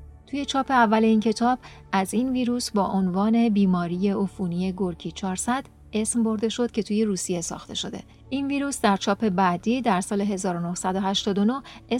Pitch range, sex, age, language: 185-230 Hz, female, 30-49, Persian